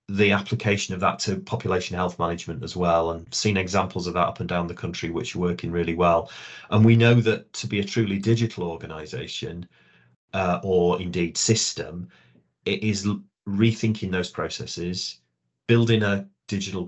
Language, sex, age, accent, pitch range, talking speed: English, male, 30-49, British, 90-105 Hz, 165 wpm